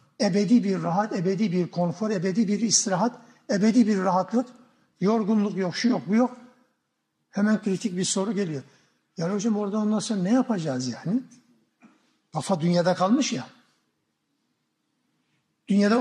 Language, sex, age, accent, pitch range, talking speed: Turkish, male, 60-79, native, 180-240 Hz, 135 wpm